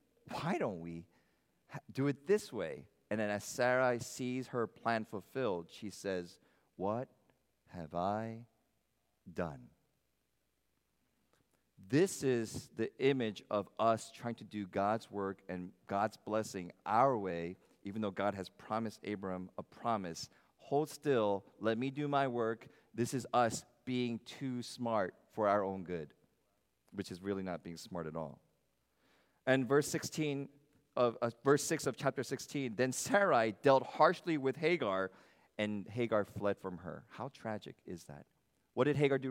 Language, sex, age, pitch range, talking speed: English, male, 40-59, 100-135 Hz, 150 wpm